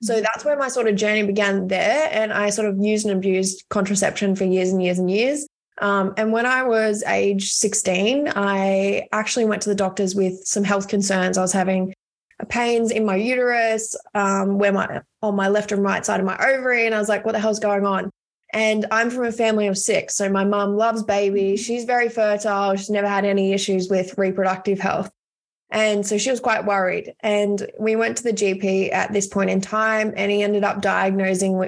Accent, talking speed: Australian, 215 wpm